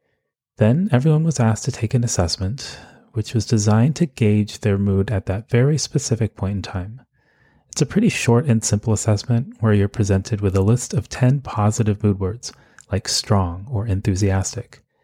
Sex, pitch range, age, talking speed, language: male, 100-125 Hz, 30-49, 175 wpm, English